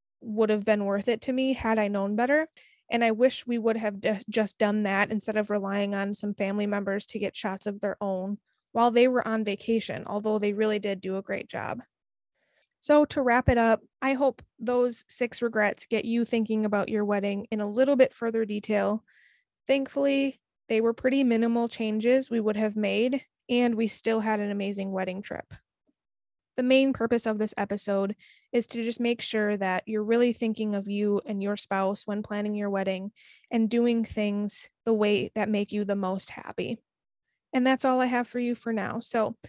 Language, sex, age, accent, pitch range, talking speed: English, female, 20-39, American, 205-240 Hz, 200 wpm